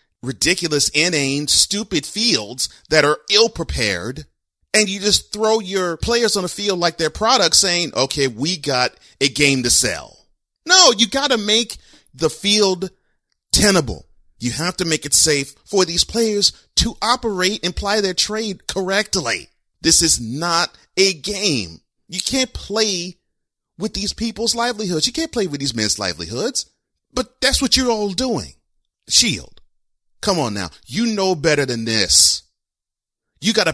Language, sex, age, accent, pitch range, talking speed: English, male, 30-49, American, 140-205 Hz, 155 wpm